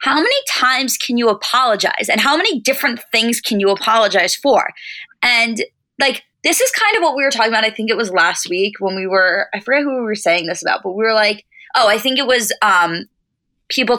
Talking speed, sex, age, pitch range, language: 230 wpm, female, 20-39, 190-250 Hz, English